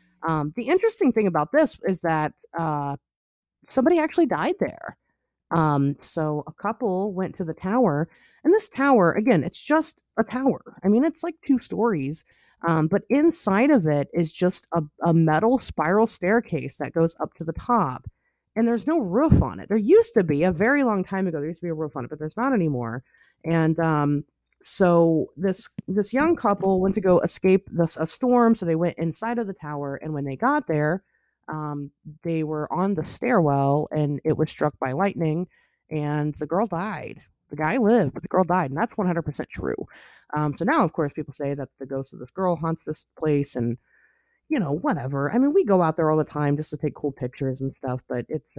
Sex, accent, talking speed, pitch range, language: female, American, 215 wpm, 150-215 Hz, English